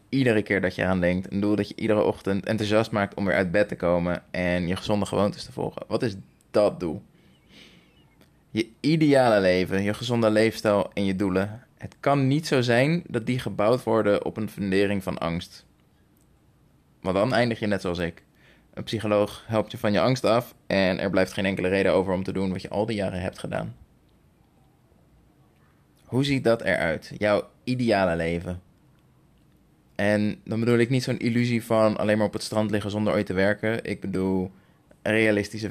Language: Dutch